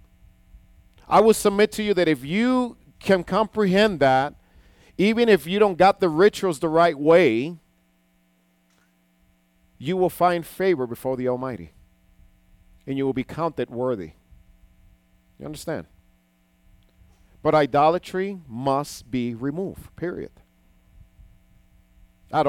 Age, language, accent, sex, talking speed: 50-69, English, American, male, 115 wpm